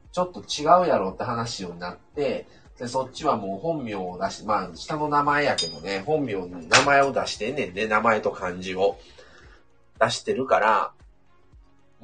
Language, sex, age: Japanese, male, 30-49